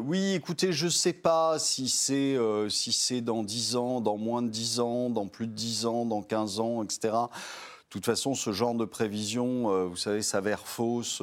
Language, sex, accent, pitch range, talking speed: French, male, French, 95-130 Hz, 215 wpm